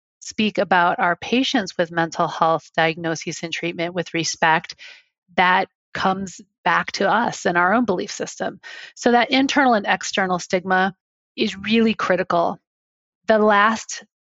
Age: 30-49